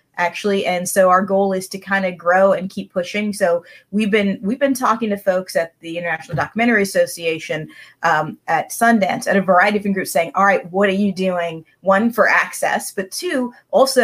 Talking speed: 205 wpm